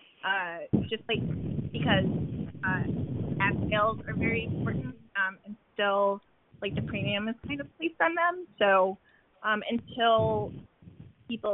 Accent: American